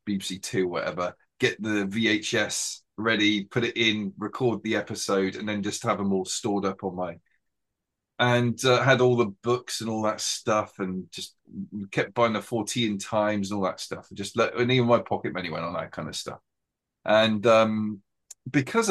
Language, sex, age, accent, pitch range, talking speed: English, male, 30-49, British, 105-130 Hz, 190 wpm